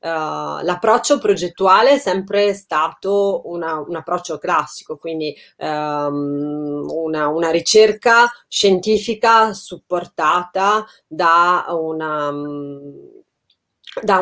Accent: native